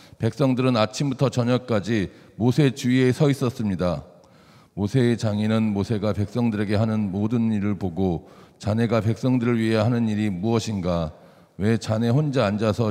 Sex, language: male, Korean